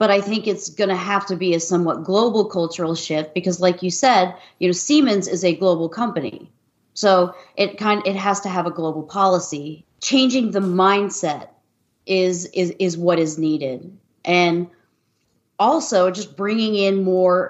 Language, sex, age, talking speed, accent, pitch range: English, female, 30-49, 175 wpm, American, 170-205 Hz